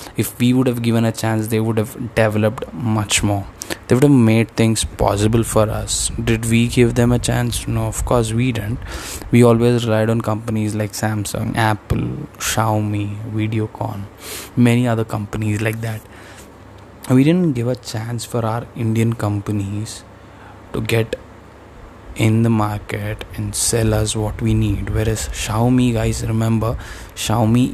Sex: male